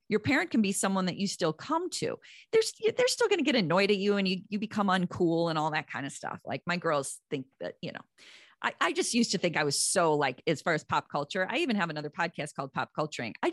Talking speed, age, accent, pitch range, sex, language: 270 wpm, 30-49, American, 170-250 Hz, female, English